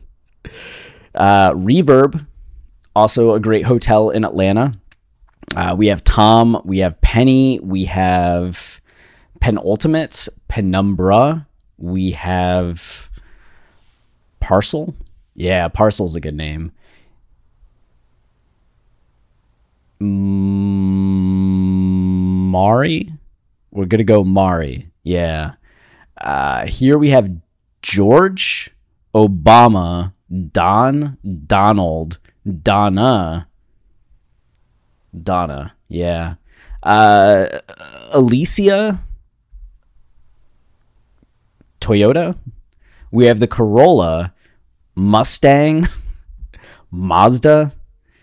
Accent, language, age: American, English, 30-49